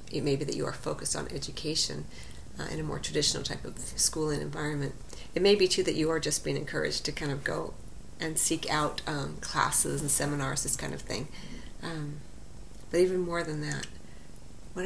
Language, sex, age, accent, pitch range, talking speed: English, female, 40-59, American, 135-170 Hz, 200 wpm